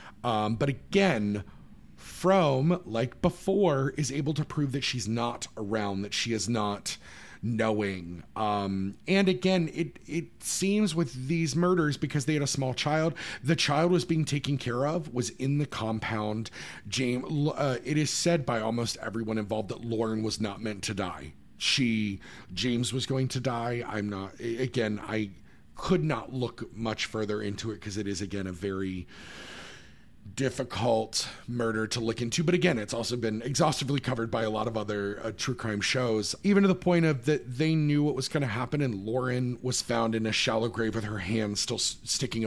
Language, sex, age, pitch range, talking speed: English, male, 40-59, 105-140 Hz, 185 wpm